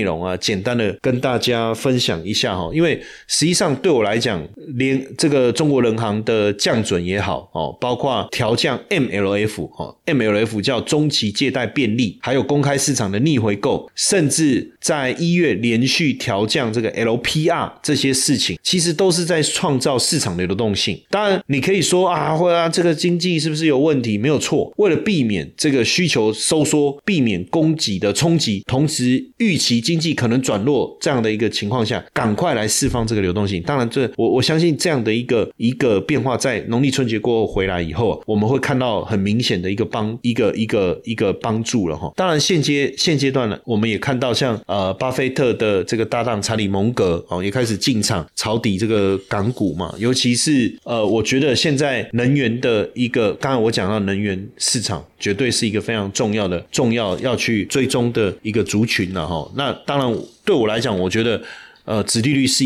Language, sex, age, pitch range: Chinese, male, 30-49, 105-145 Hz